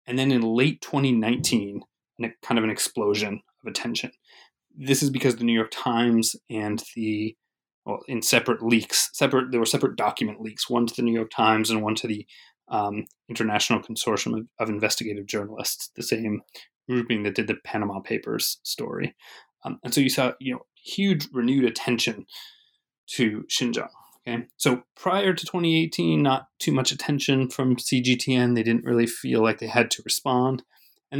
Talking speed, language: 170 wpm, English